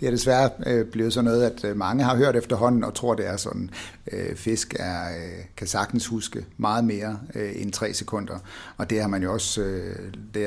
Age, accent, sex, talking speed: 60-79, native, male, 195 wpm